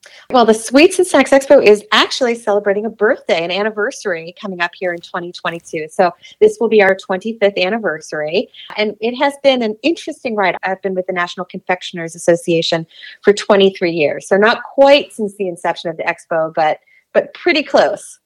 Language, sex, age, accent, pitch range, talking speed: English, female, 30-49, American, 175-230 Hz, 180 wpm